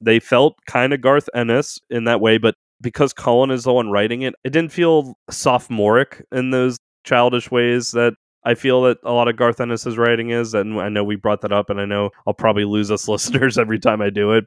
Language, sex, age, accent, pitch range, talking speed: English, male, 20-39, American, 100-120 Hz, 230 wpm